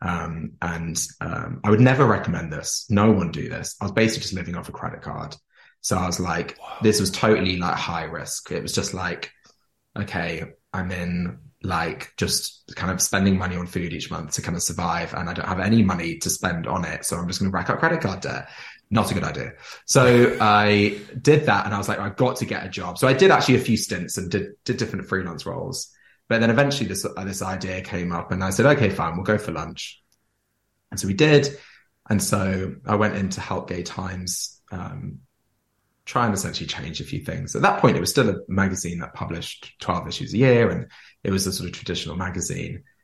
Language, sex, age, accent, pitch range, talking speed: English, male, 20-39, British, 90-115 Hz, 225 wpm